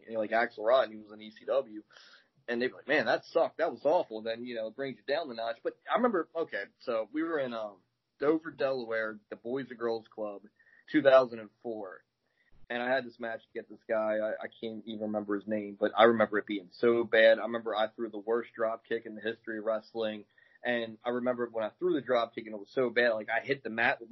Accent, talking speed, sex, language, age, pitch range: American, 245 wpm, male, English, 30-49, 110-125 Hz